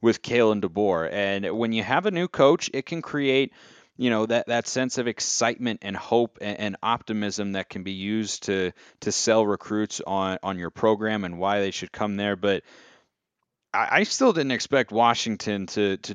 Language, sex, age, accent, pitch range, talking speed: English, male, 30-49, American, 100-120 Hz, 190 wpm